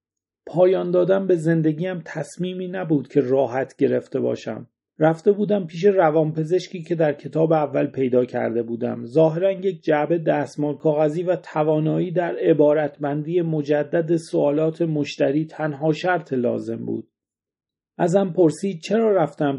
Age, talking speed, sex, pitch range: 40-59, 125 wpm, male, 145-170 Hz